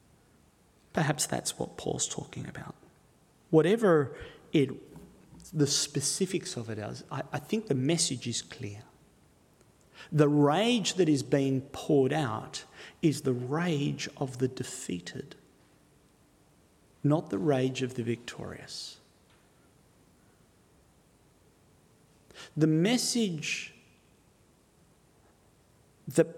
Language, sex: English, male